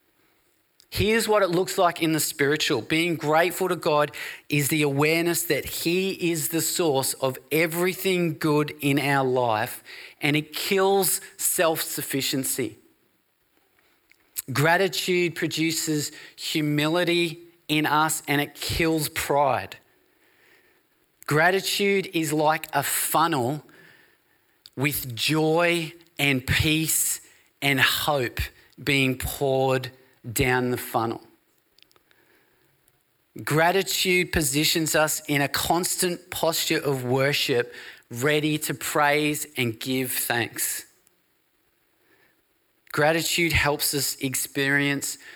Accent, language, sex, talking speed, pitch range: Australian, English, male, 100 wpm, 135-170 Hz